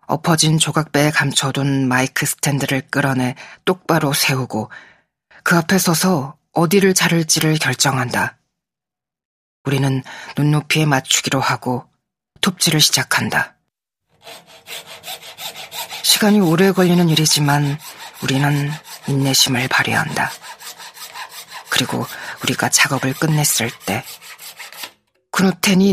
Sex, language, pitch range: female, Korean, 135-175 Hz